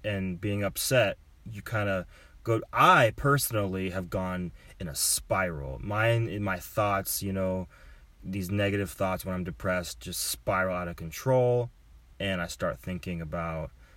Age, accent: 30-49, American